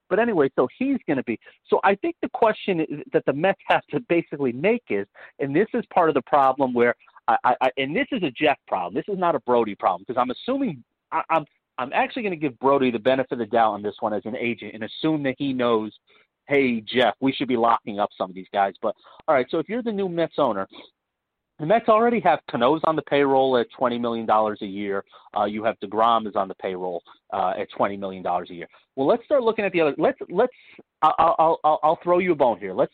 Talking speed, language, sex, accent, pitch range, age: 260 wpm, English, male, American, 115-165 Hz, 40-59